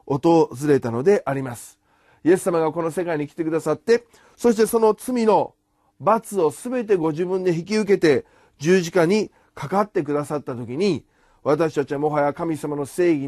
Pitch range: 145-230 Hz